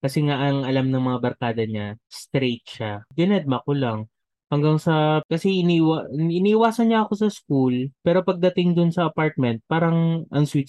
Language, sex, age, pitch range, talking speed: Filipino, male, 20-39, 125-155 Hz, 165 wpm